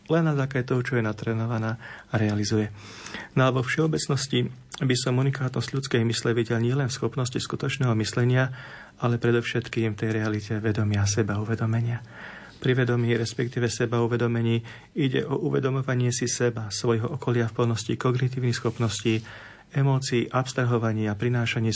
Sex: male